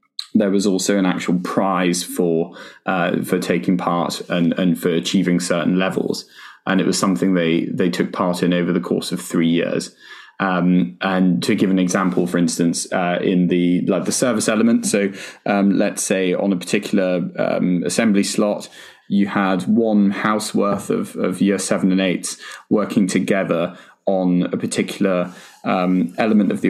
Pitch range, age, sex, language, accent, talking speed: 90-100 Hz, 20-39, male, English, British, 175 wpm